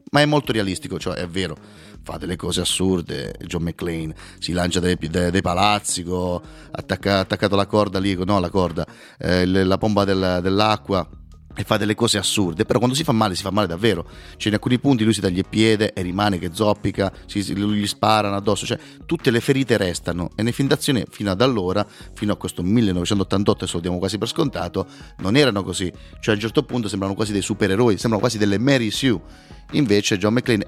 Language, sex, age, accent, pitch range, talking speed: Italian, male, 30-49, native, 90-110 Hz, 205 wpm